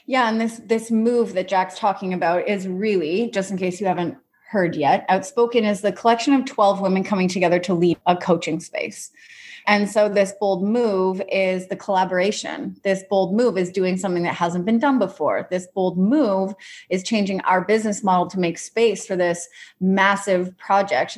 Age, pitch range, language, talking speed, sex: 30-49, 185-230 Hz, English, 185 wpm, female